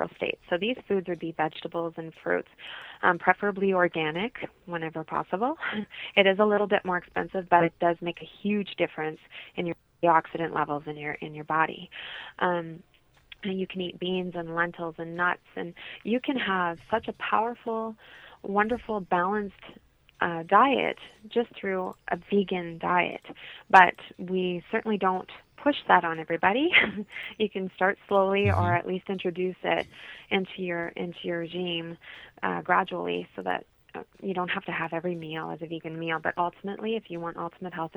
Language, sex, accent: English, female, American